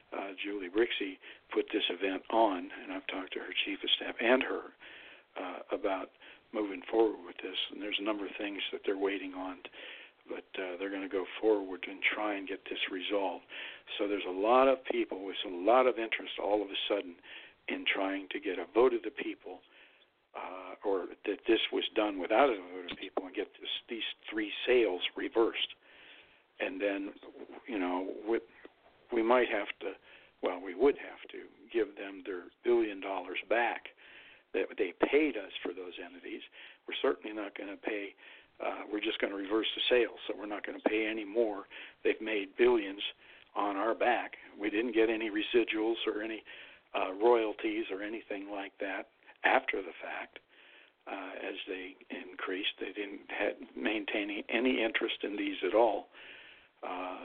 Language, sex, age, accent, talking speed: English, male, 60-79, American, 180 wpm